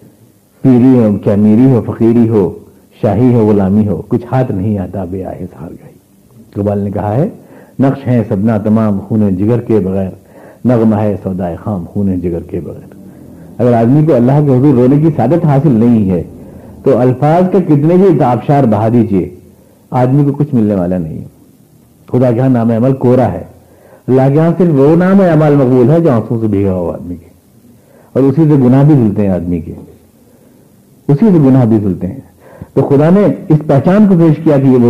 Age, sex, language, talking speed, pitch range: 60-79, male, Urdu, 200 wpm, 105-165 Hz